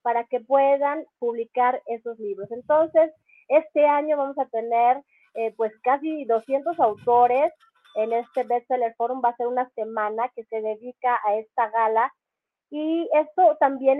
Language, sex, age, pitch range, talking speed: English, female, 30-49, 225-275 Hz, 150 wpm